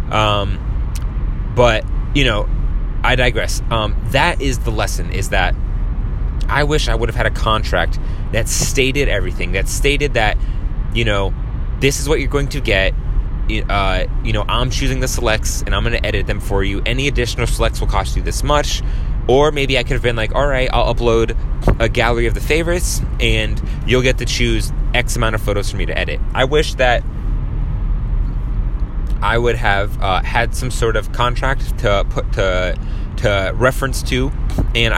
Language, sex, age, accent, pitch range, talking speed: English, male, 20-39, American, 100-125 Hz, 180 wpm